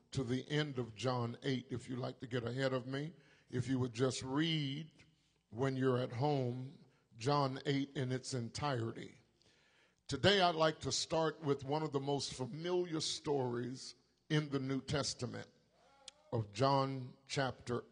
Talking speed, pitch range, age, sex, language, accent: 155 wpm, 130-150 Hz, 50-69, male, English, American